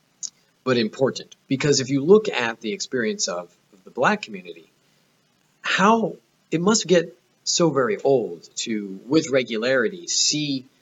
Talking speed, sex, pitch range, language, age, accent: 140 wpm, male, 105-170 Hz, English, 30-49, American